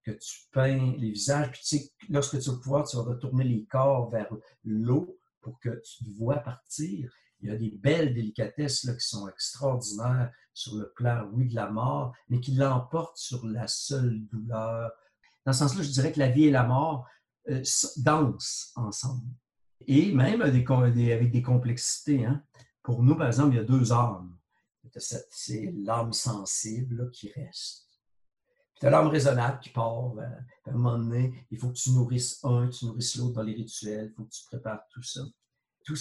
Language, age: French, 60-79